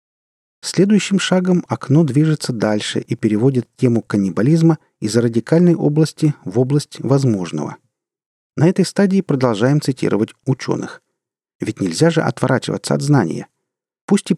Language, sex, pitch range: Russian, male, 110-160 Hz